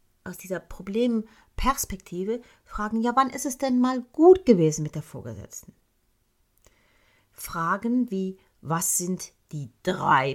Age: 40-59